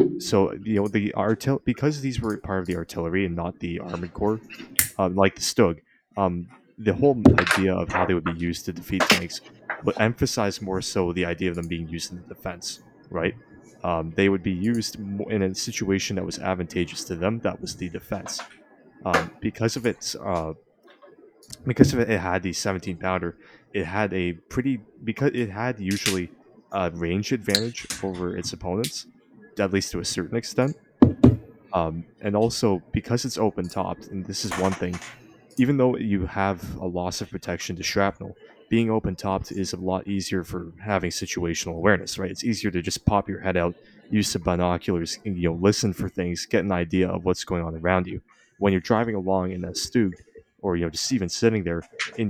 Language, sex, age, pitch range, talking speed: English, male, 20-39, 90-110 Hz, 195 wpm